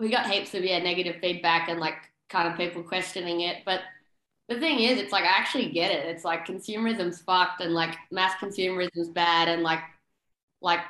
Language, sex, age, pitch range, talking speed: English, female, 20-39, 170-200 Hz, 205 wpm